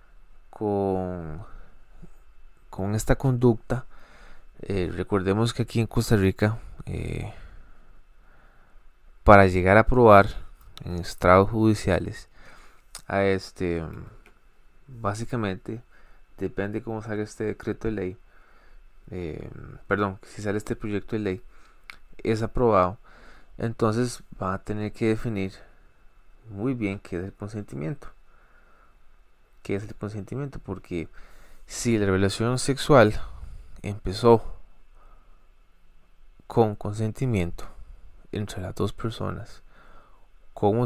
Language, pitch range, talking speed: Spanish, 95-115 Hz, 100 wpm